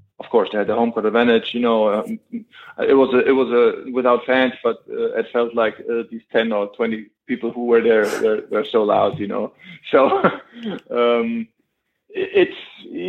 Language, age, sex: English, 20-39, male